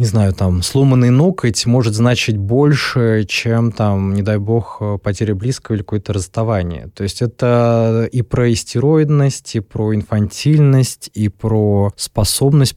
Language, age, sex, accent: Russian, 20-39, male, native